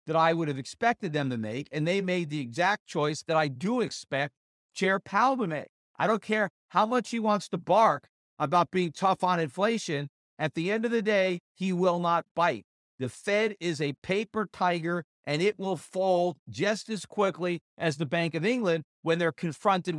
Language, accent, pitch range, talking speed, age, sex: English, American, 150-190 Hz, 200 wpm, 50-69, male